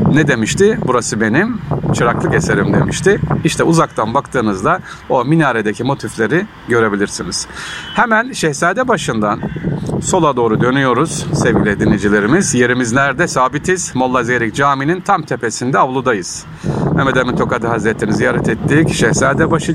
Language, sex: Turkish, male